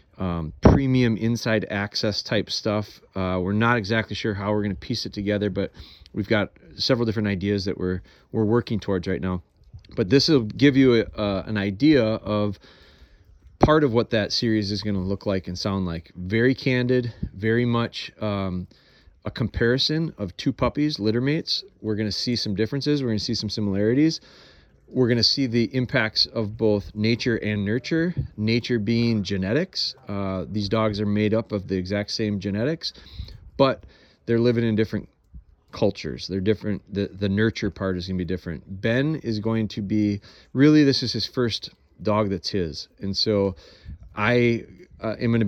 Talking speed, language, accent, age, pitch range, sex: 180 wpm, English, American, 30-49, 95-115 Hz, male